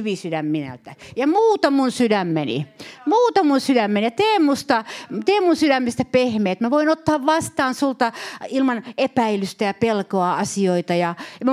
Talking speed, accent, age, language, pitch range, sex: 140 wpm, native, 50-69, Finnish, 190-270 Hz, female